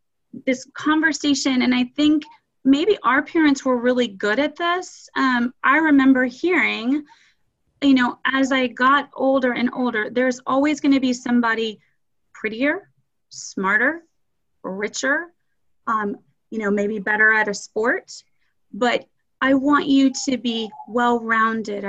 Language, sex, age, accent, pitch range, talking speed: English, female, 30-49, American, 225-265 Hz, 135 wpm